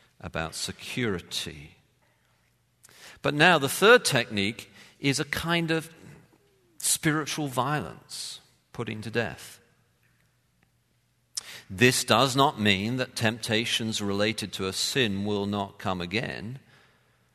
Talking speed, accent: 105 wpm, British